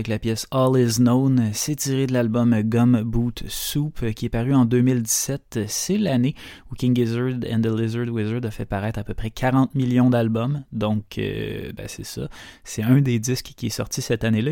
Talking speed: 200 wpm